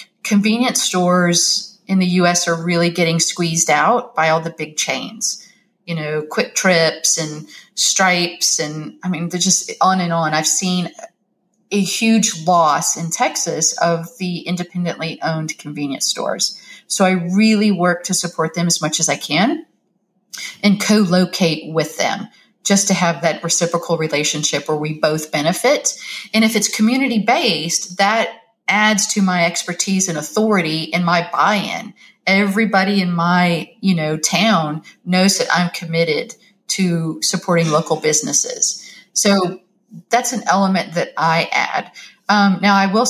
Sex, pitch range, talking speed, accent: female, 165-200 Hz, 150 wpm, American